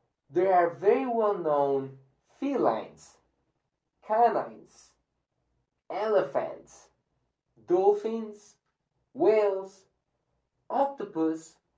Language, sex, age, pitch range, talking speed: English, male, 30-49, 135-215 Hz, 50 wpm